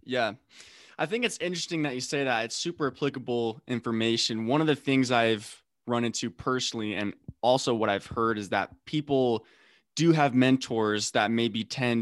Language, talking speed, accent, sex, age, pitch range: English, 180 wpm, American, male, 20-39, 110-135 Hz